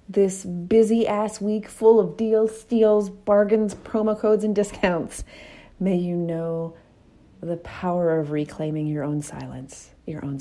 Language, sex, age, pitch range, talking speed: English, female, 30-49, 150-185 Hz, 140 wpm